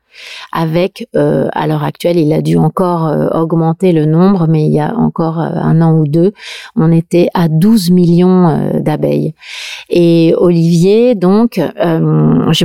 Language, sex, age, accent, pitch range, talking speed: French, female, 40-59, French, 160-195 Hz, 165 wpm